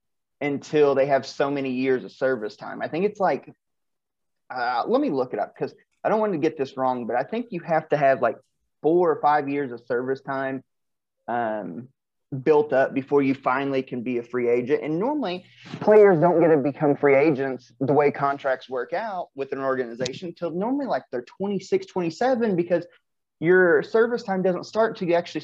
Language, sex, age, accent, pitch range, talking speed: English, male, 30-49, American, 135-185 Hz, 200 wpm